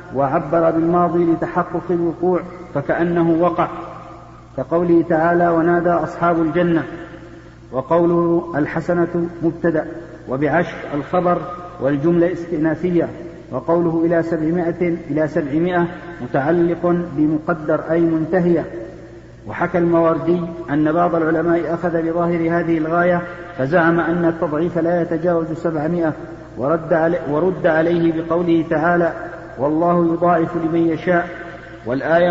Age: 50-69